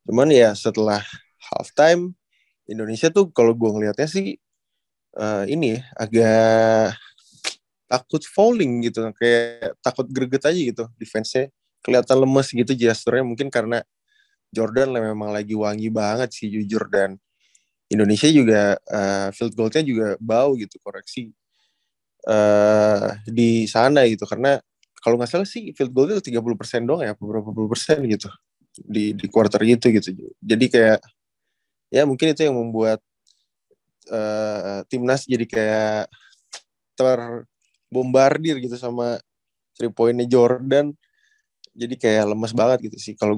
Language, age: Indonesian, 20-39